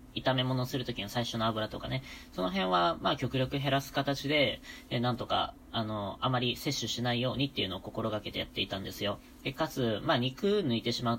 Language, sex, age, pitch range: Japanese, female, 20-39, 105-130 Hz